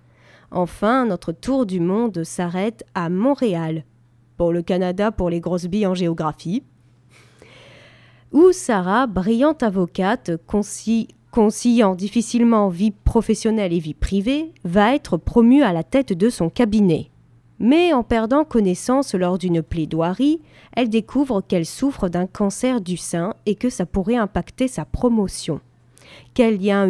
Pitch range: 175-235 Hz